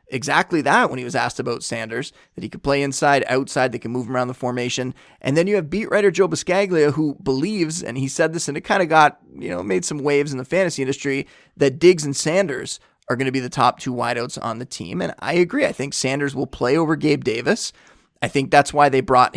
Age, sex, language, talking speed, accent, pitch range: 20-39, male, English, 250 wpm, American, 130-165 Hz